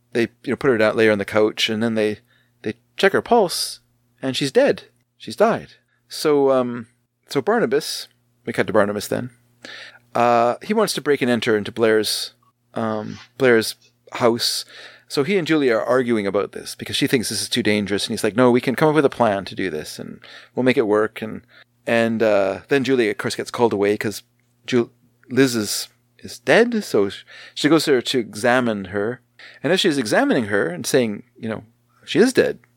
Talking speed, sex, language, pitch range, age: 205 wpm, male, English, 110-145 Hz, 30-49